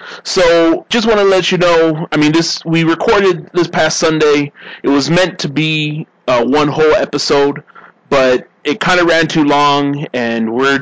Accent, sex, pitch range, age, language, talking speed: American, male, 125-160 Hz, 30-49, English, 185 wpm